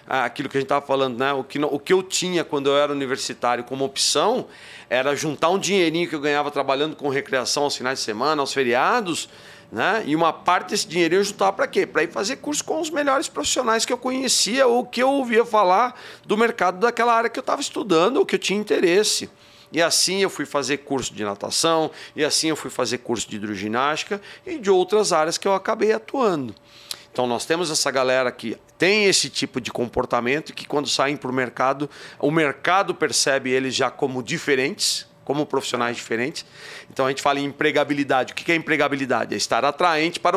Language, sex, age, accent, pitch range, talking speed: Portuguese, male, 40-59, Brazilian, 130-185 Hz, 205 wpm